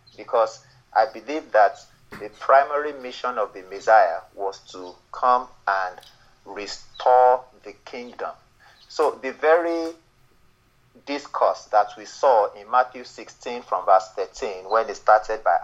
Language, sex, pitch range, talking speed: English, male, 105-130 Hz, 130 wpm